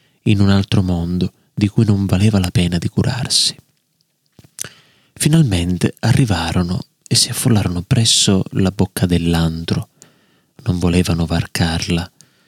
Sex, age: male, 30-49